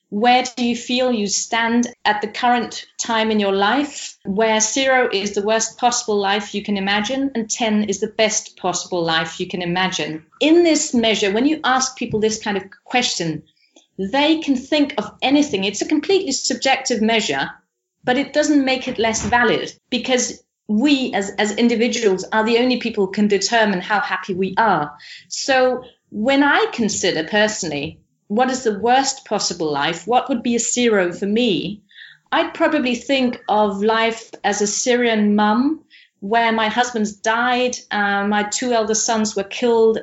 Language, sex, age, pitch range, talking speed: English, female, 40-59, 200-250 Hz, 170 wpm